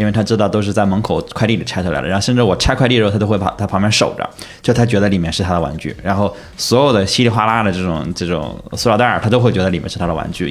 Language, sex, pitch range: Chinese, male, 90-115 Hz